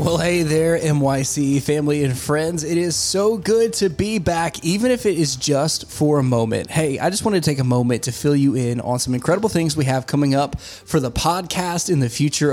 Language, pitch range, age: English, 125-155 Hz, 20-39